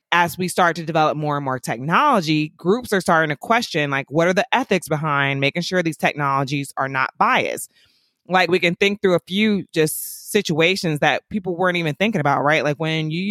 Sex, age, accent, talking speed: female, 20-39, American, 210 wpm